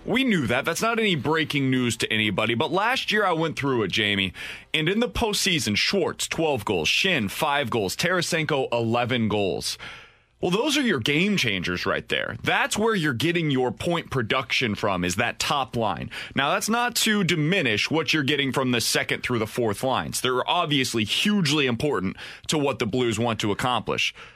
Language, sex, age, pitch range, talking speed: English, male, 30-49, 125-185 Hz, 190 wpm